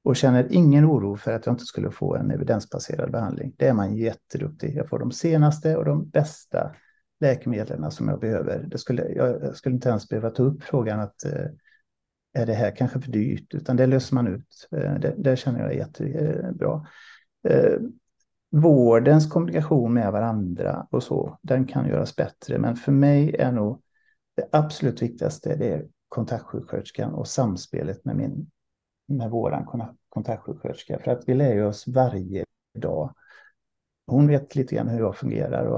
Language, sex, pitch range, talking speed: Swedish, male, 115-150 Hz, 160 wpm